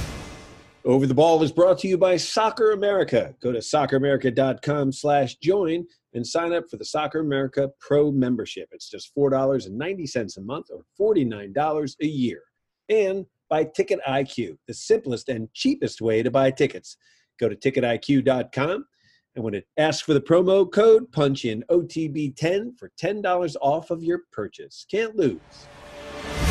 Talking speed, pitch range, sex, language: 160 wpm, 115-170 Hz, male, English